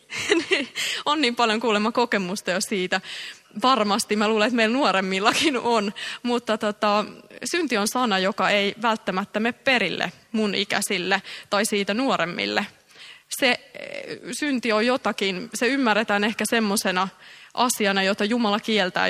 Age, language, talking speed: 20-39, Finnish, 130 wpm